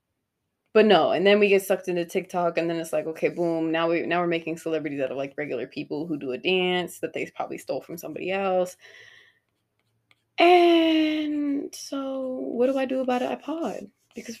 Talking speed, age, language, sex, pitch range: 200 wpm, 20-39, English, female, 165-250 Hz